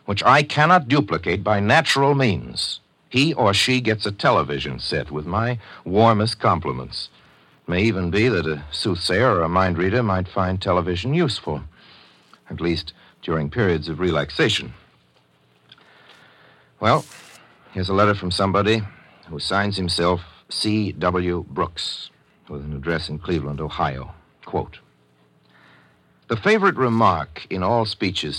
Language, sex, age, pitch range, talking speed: English, male, 60-79, 80-110 Hz, 135 wpm